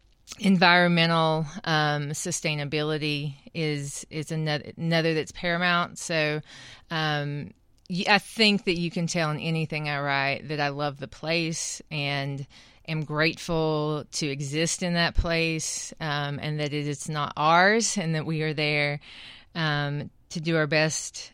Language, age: English, 30-49